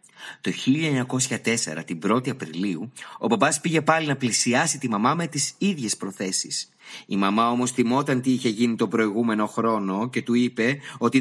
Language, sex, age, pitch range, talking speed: Greek, male, 30-49, 115-155 Hz, 165 wpm